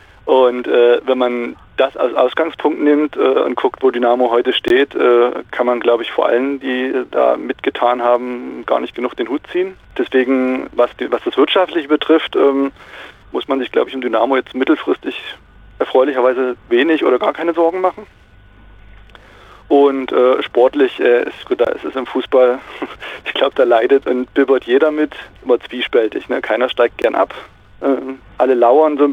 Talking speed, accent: 170 wpm, German